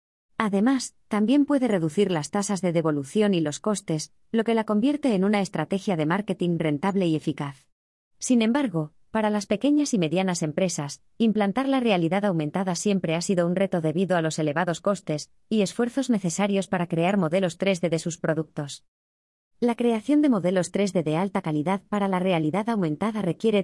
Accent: Spanish